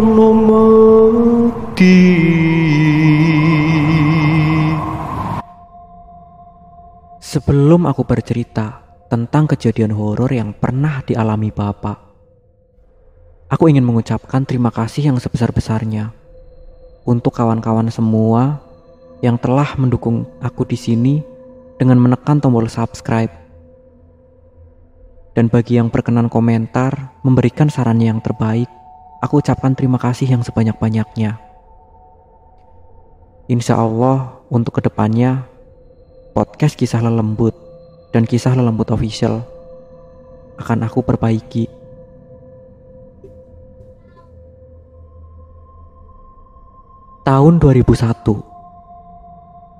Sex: male